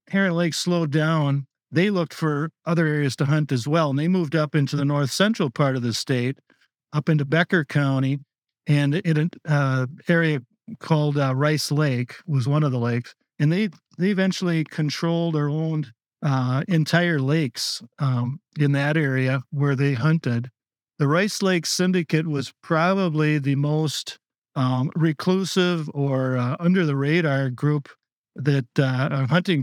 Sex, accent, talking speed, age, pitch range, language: male, American, 160 wpm, 50-69, 140-165 Hz, English